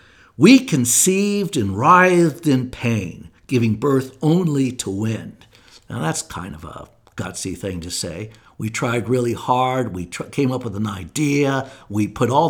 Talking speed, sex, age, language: 160 wpm, male, 60-79, English